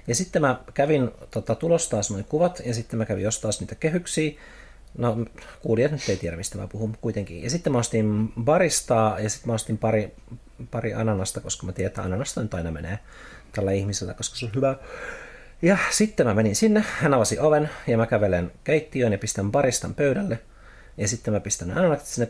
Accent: native